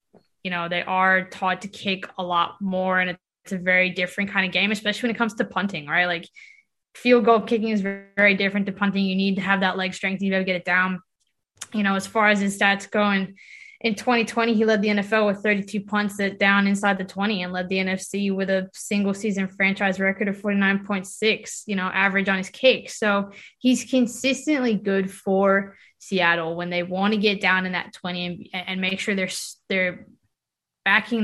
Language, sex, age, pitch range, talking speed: English, female, 20-39, 185-215 Hz, 215 wpm